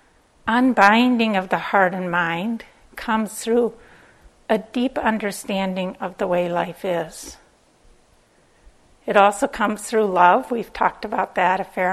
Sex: female